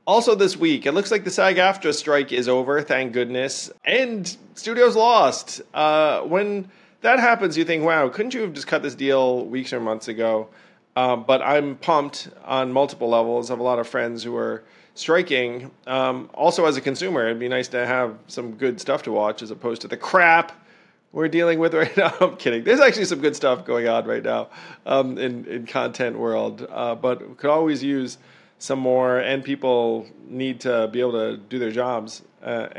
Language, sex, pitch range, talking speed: English, male, 120-165 Hz, 200 wpm